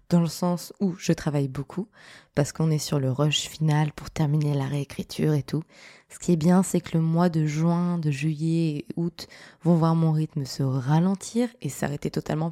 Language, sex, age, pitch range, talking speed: French, female, 20-39, 155-185 Hz, 205 wpm